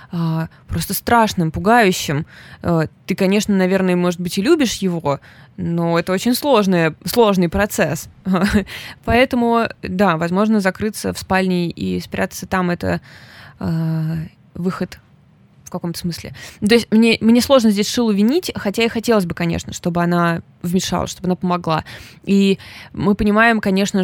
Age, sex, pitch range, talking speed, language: 20-39, female, 175-220 Hz, 135 wpm, Russian